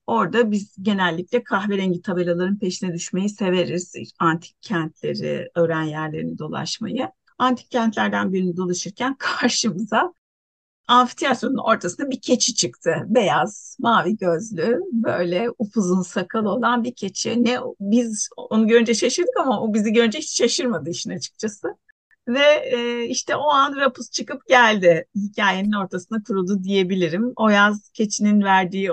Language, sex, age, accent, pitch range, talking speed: Turkish, female, 60-79, native, 180-245 Hz, 125 wpm